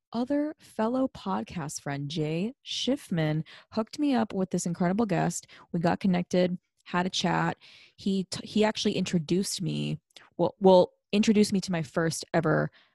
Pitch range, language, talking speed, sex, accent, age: 165-215 Hz, English, 160 wpm, female, American, 20-39